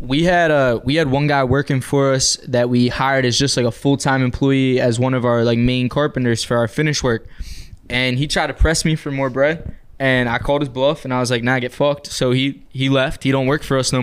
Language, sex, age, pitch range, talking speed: English, male, 20-39, 120-140 Hz, 265 wpm